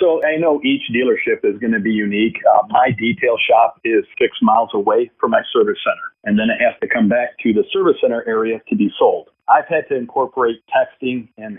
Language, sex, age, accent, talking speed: English, male, 50-69, American, 225 wpm